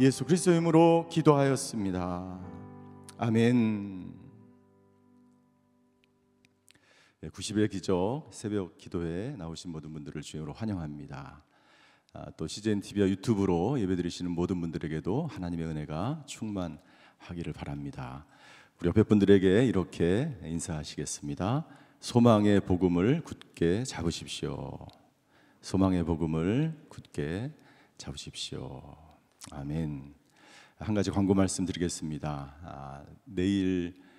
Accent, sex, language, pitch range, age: native, male, Korean, 80-115 Hz, 50-69